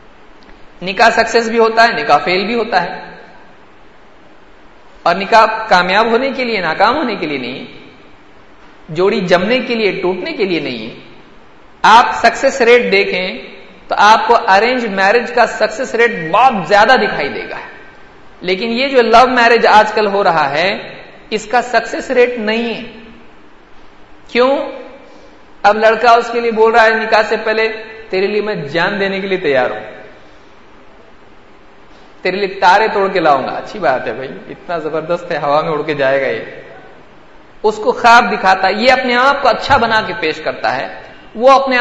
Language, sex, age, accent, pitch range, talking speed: English, male, 50-69, Indian, 195-235 Hz, 155 wpm